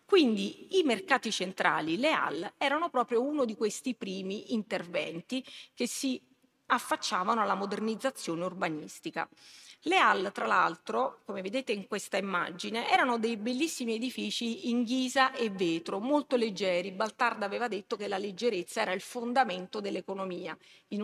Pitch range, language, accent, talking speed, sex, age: 185-255 Hz, Italian, native, 140 wpm, female, 30-49